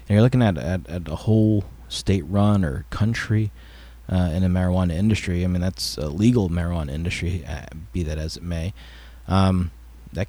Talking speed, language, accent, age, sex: 175 wpm, English, American, 30-49, male